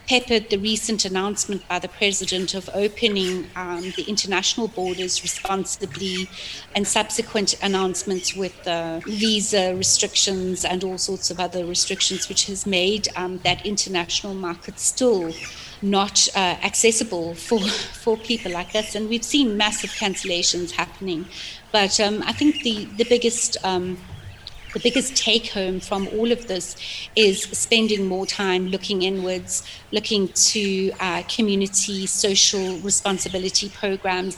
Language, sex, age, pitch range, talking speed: English, female, 30-49, 185-210 Hz, 135 wpm